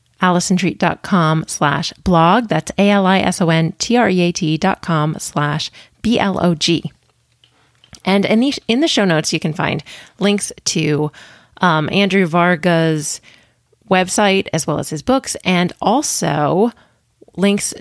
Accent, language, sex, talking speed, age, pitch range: American, English, female, 110 wpm, 30-49, 155-200 Hz